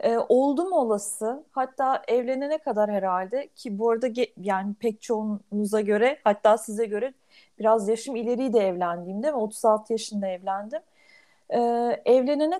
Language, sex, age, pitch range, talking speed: Turkish, female, 40-59, 210-285 Hz, 135 wpm